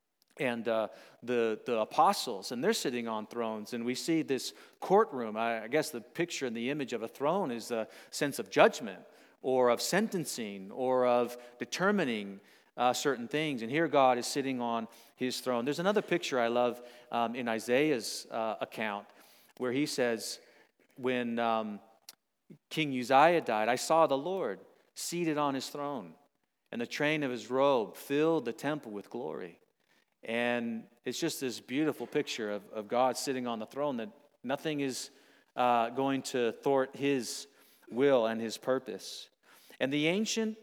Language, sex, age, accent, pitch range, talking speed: English, male, 40-59, American, 115-145 Hz, 165 wpm